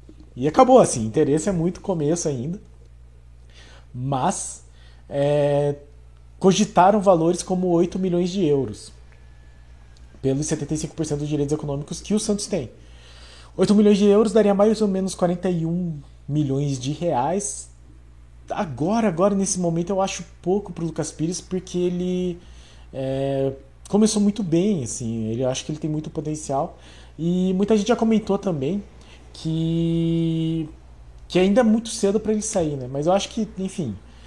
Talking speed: 145 wpm